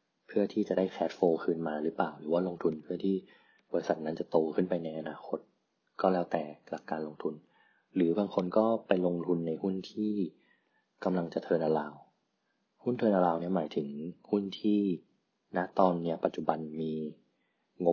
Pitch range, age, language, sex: 80-95 Hz, 20-39, Thai, male